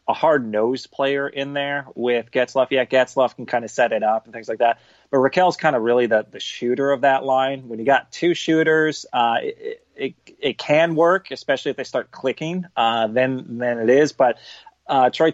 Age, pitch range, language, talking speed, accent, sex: 30-49, 115-140 Hz, English, 215 wpm, American, male